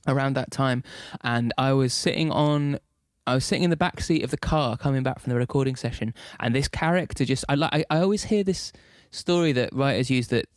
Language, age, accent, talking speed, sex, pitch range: Dutch, 20-39, British, 220 wpm, male, 115-135 Hz